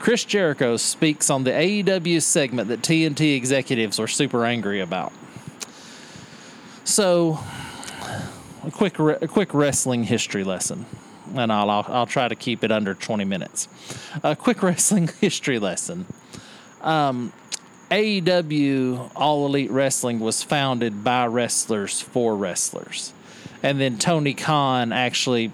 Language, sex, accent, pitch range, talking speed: English, male, American, 120-155 Hz, 130 wpm